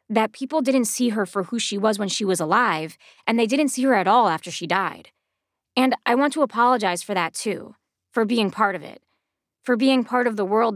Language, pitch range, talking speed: English, 185-250 Hz, 235 wpm